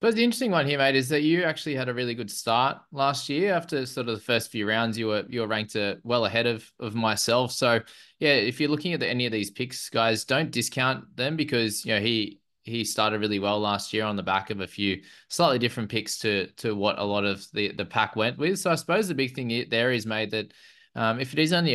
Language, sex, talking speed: English, male, 260 wpm